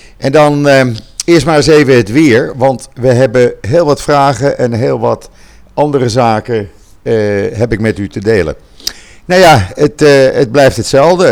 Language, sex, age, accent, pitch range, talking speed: Dutch, male, 50-69, Dutch, 100-130 Hz, 175 wpm